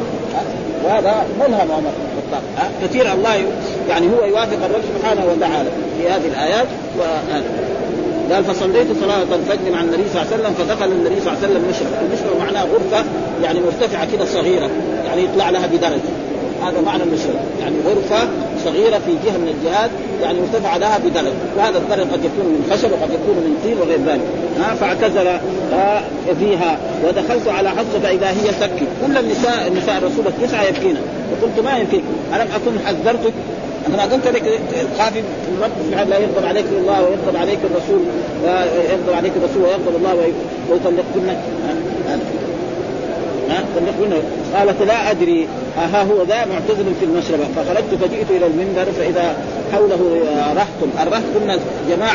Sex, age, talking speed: male, 40-59, 145 wpm